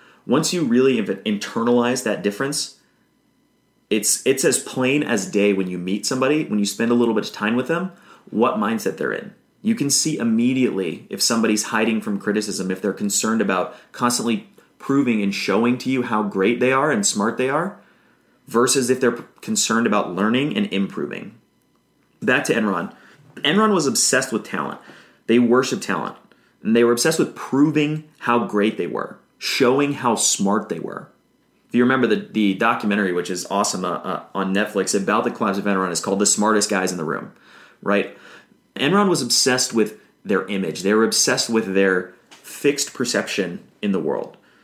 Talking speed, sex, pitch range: 180 wpm, male, 105-130 Hz